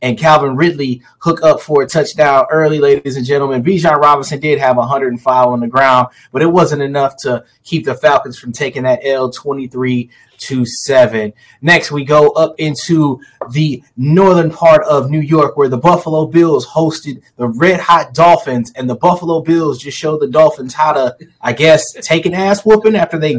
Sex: male